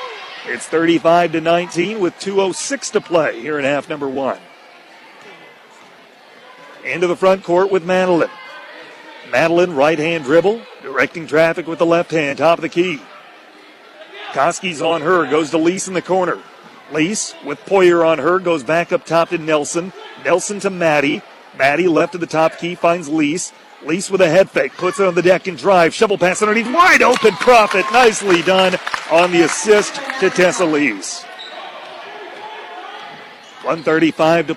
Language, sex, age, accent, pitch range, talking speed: English, male, 40-59, American, 165-190 Hz, 160 wpm